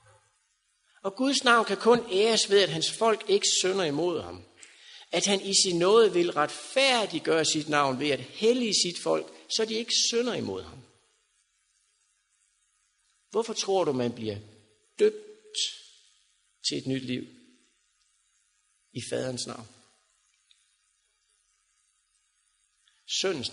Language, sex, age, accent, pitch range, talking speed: Danish, male, 60-79, native, 150-235 Hz, 120 wpm